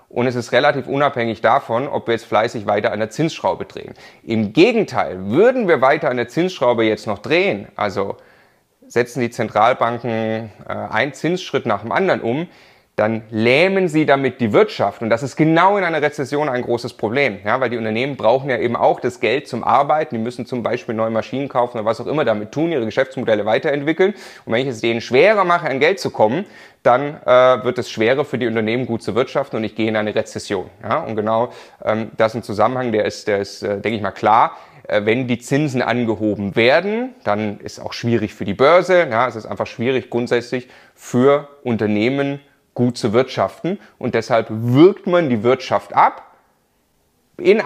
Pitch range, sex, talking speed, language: 115-150 Hz, male, 200 wpm, German